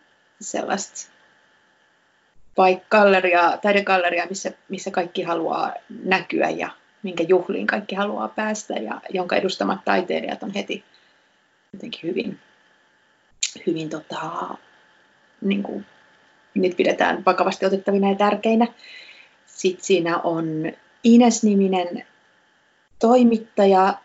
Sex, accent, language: female, native, Finnish